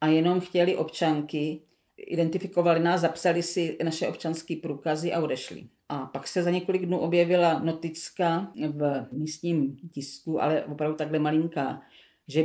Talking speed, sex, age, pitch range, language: 140 wpm, female, 40-59, 150-175 Hz, Czech